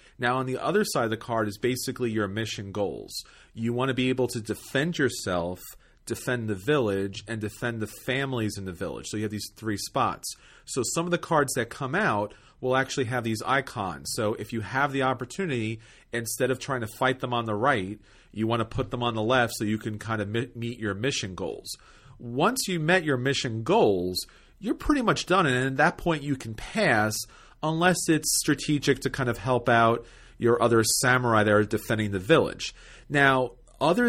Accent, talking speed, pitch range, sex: American, 205 wpm, 110-140 Hz, male